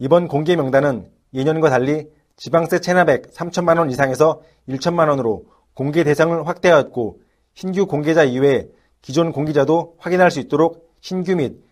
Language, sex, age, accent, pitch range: Korean, male, 40-59, native, 145-170 Hz